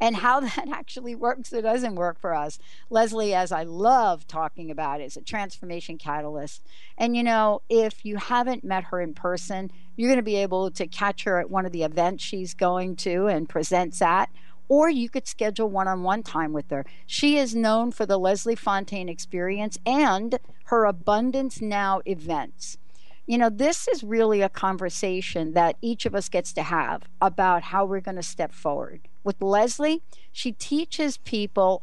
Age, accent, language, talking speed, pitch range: 60-79, American, English, 180 wpm, 180-235 Hz